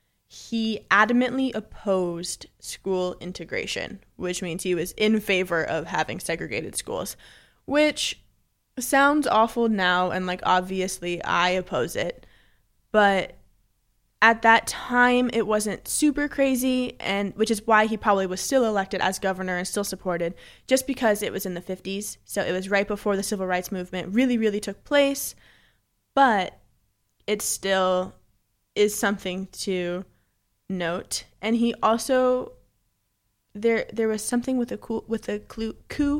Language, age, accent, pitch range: English, 20-39, American, 175-220 Hz